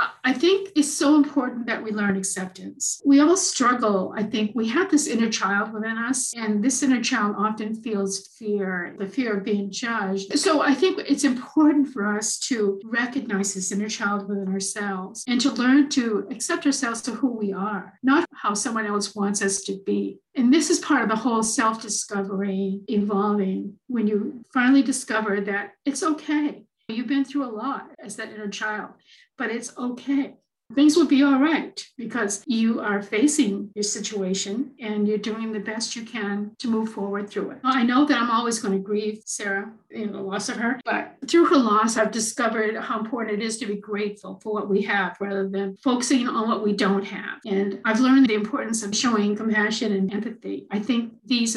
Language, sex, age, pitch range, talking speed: English, female, 50-69, 205-255 Hz, 195 wpm